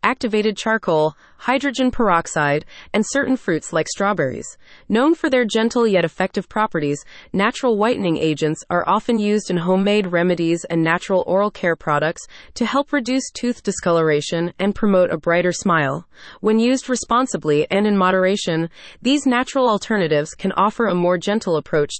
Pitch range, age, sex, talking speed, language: 170-235 Hz, 30-49, female, 150 wpm, English